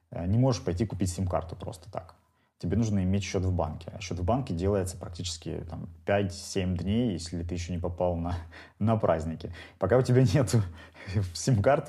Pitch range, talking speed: 85-105 Hz, 175 wpm